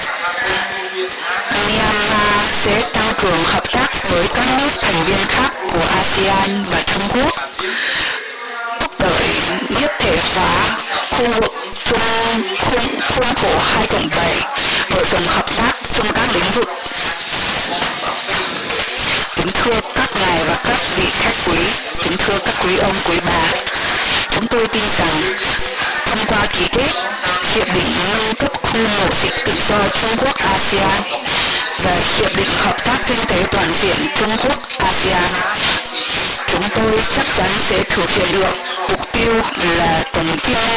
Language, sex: Chinese, female